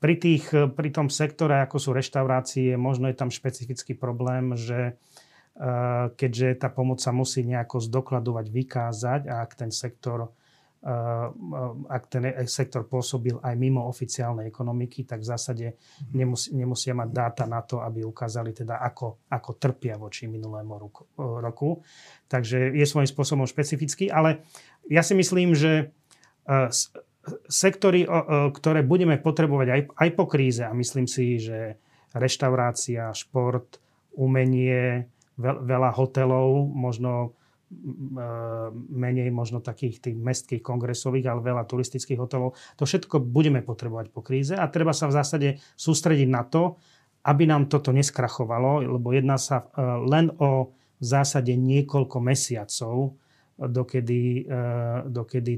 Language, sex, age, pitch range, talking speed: Slovak, male, 30-49, 120-140 Hz, 125 wpm